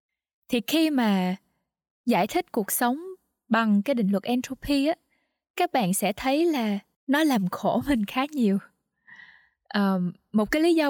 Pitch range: 205-270 Hz